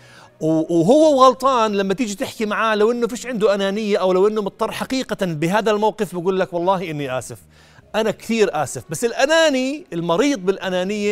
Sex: male